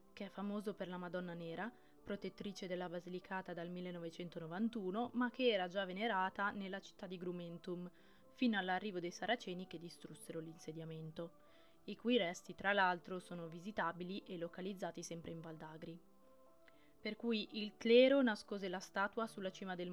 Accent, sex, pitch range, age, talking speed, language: native, female, 175-215 Hz, 20-39, 150 wpm, Italian